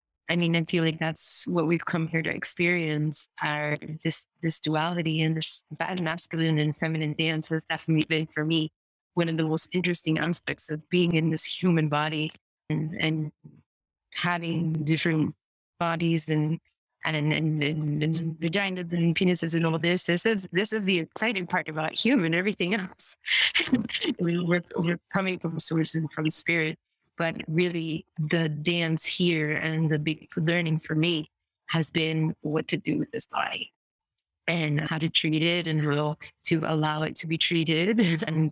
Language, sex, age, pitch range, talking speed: English, female, 20-39, 155-170 Hz, 165 wpm